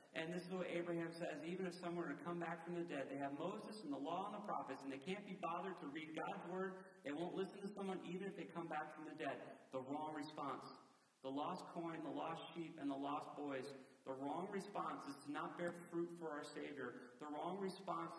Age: 40-59